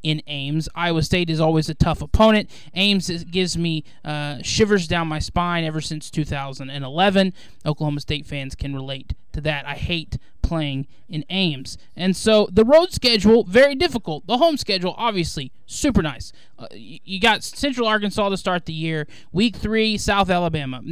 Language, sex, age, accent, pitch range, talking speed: English, male, 20-39, American, 155-200 Hz, 165 wpm